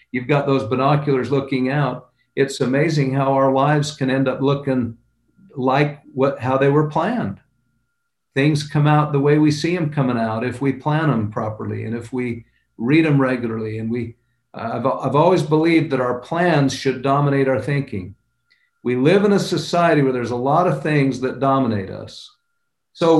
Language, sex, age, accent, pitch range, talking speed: English, male, 50-69, American, 125-155 Hz, 185 wpm